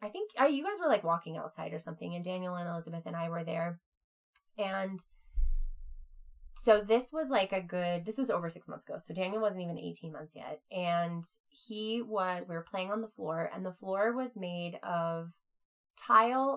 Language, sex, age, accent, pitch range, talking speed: English, female, 20-39, American, 170-220 Hz, 195 wpm